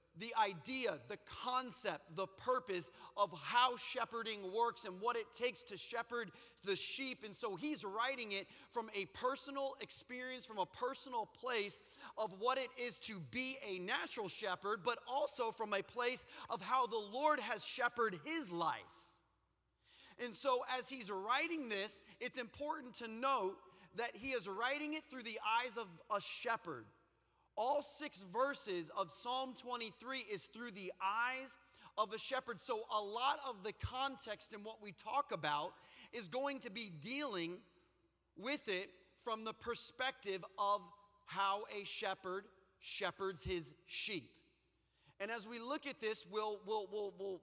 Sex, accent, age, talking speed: male, American, 30-49, 160 wpm